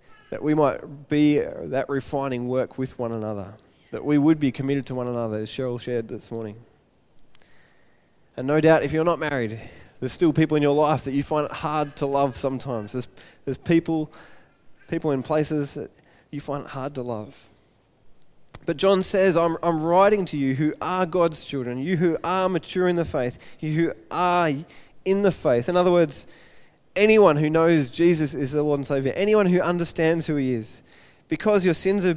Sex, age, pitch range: male, 20-39, 140-185 Hz